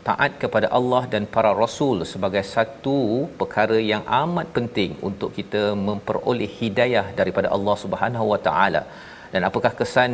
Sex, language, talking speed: male, Malayalam, 140 wpm